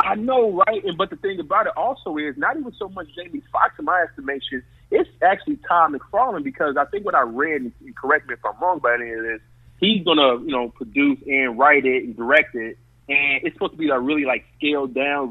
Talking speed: 235 wpm